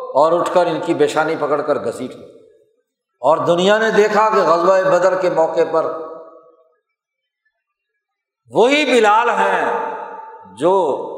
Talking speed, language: 125 wpm, Urdu